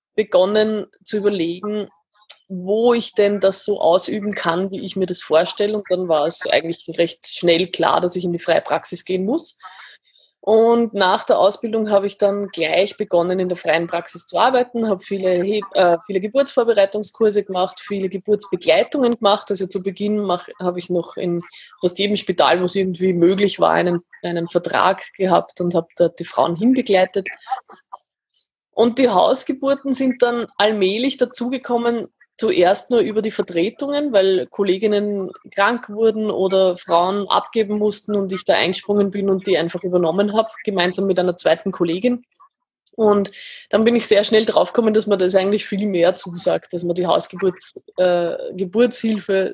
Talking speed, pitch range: 165 wpm, 180-215 Hz